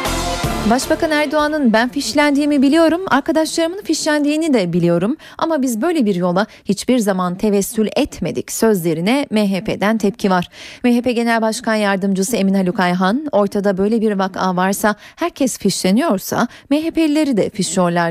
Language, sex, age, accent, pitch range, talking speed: Turkish, female, 30-49, native, 185-245 Hz, 130 wpm